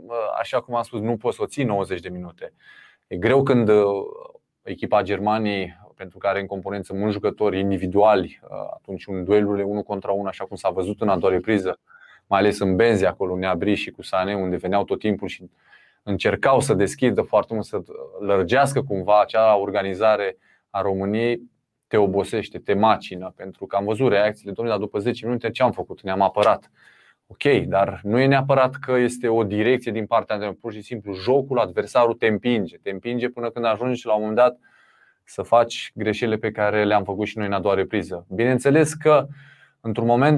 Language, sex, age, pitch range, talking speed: Romanian, male, 20-39, 100-135 Hz, 190 wpm